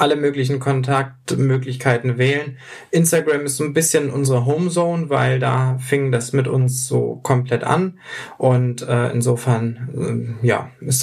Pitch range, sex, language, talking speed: 120-135 Hz, male, German, 140 wpm